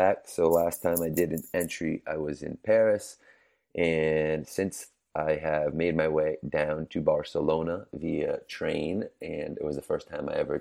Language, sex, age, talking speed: English, male, 30-49, 175 wpm